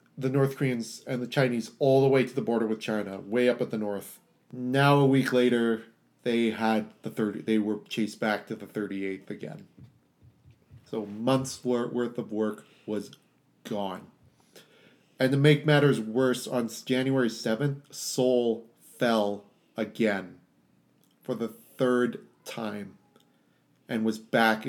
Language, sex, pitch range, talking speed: English, male, 110-135 Hz, 145 wpm